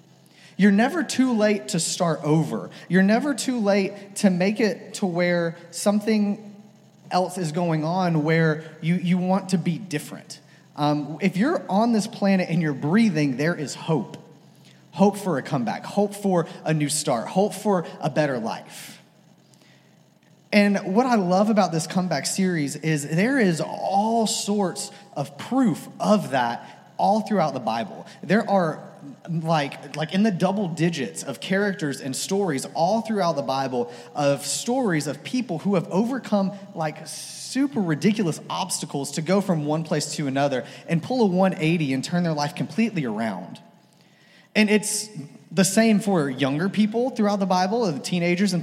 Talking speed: 160 wpm